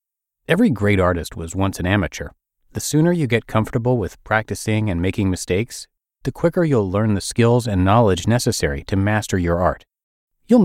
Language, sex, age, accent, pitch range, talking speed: English, male, 30-49, American, 95-140 Hz, 175 wpm